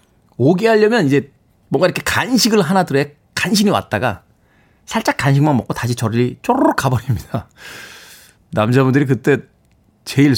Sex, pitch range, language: male, 110-170 Hz, Korean